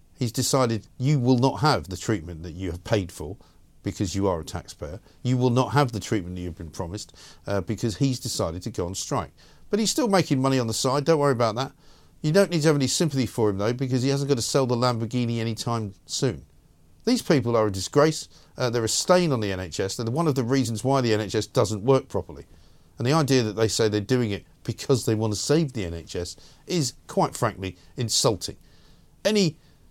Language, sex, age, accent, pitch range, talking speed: English, male, 50-69, British, 100-135 Hz, 225 wpm